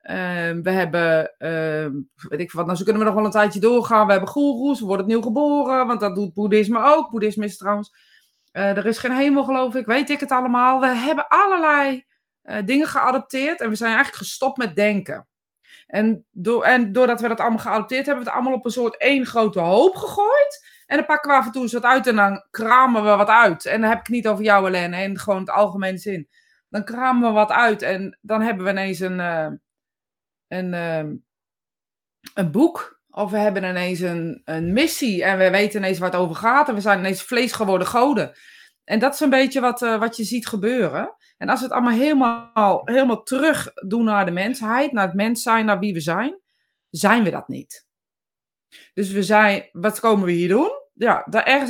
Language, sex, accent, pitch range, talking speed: Dutch, female, Dutch, 200-265 Hz, 215 wpm